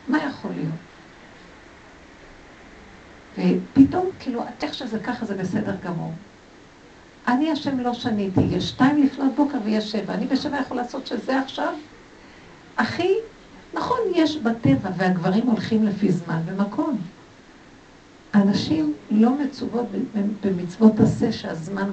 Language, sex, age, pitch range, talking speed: Hebrew, female, 60-79, 185-245 Hz, 120 wpm